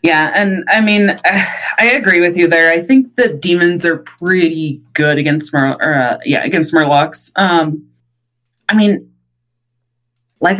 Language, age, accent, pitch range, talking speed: English, 20-39, American, 145-180 Hz, 145 wpm